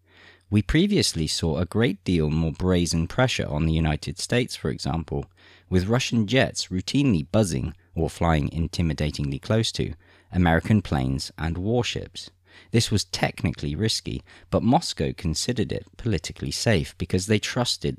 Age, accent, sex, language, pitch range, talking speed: 40-59, British, male, English, 80-105 Hz, 140 wpm